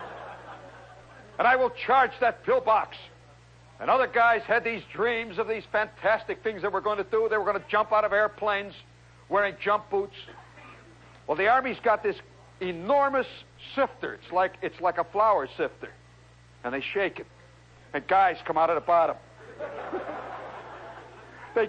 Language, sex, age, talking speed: English, male, 60-79, 160 wpm